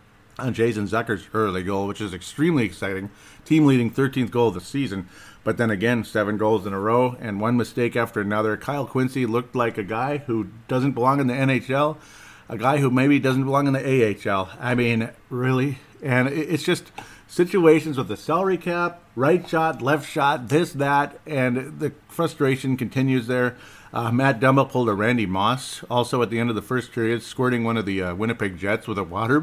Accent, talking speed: American, 200 wpm